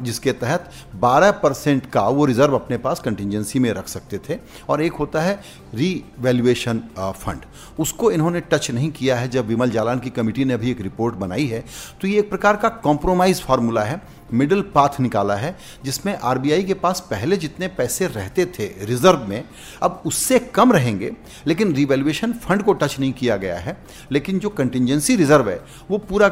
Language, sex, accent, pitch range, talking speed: Hindi, male, native, 125-185 Hz, 180 wpm